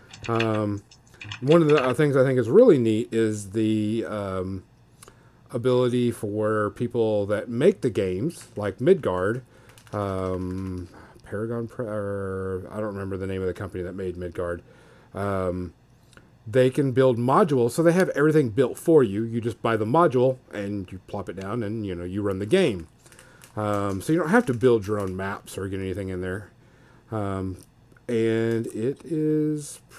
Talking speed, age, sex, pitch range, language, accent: 165 wpm, 40-59, male, 105-130 Hz, English, American